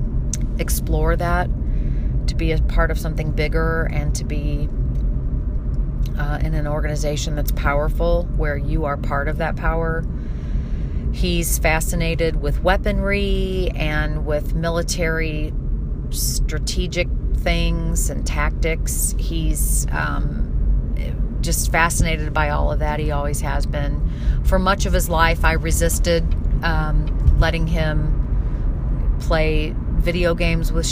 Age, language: 40-59, English